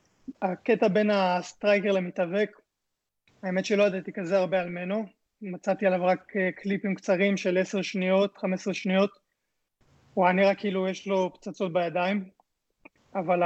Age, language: 20-39, Hebrew